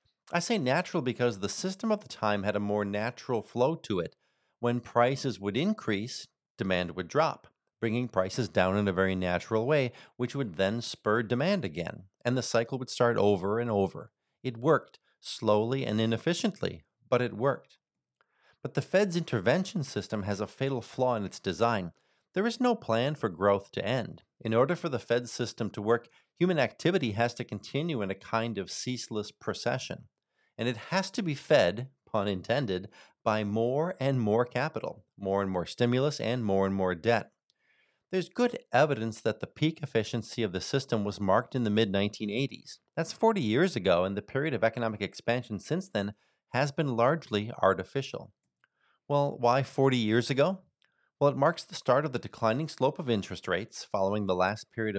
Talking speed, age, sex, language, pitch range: 180 wpm, 40-59, male, English, 105-140 Hz